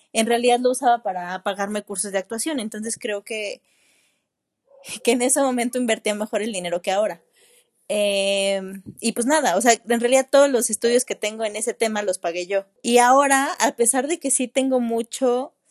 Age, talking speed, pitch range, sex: 20-39, 190 wpm, 210-260 Hz, female